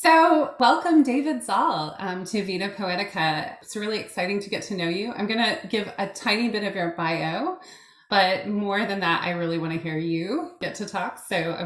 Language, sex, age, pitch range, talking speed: English, female, 20-39, 175-230 Hz, 195 wpm